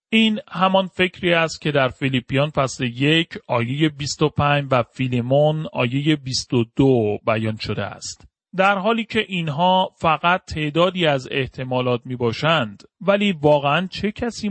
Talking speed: 130 wpm